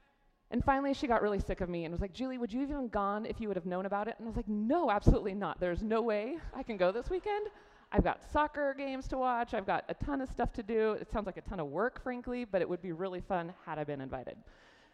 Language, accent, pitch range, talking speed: English, American, 165-230 Hz, 285 wpm